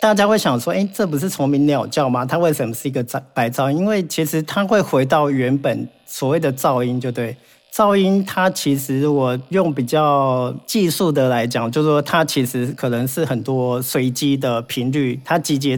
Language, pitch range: Chinese, 130-165 Hz